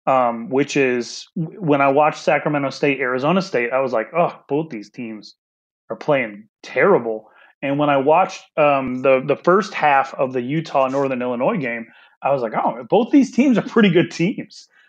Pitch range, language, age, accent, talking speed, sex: 125-170 Hz, English, 30-49, American, 180 wpm, male